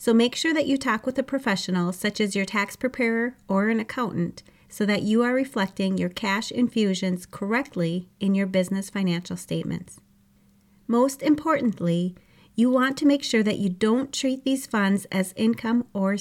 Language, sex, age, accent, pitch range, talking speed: English, female, 30-49, American, 185-240 Hz, 175 wpm